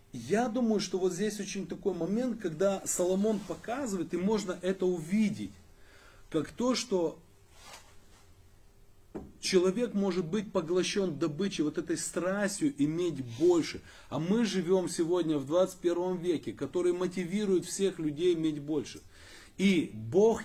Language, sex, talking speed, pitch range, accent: Russian, male, 125 wpm, 145-190 Hz, native